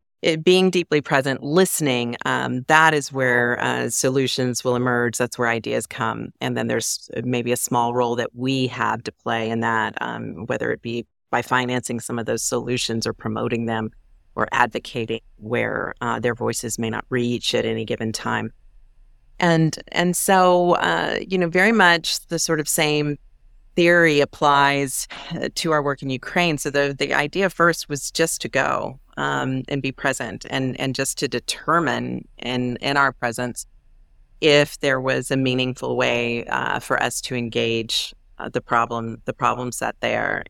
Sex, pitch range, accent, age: female, 120-140 Hz, American, 40-59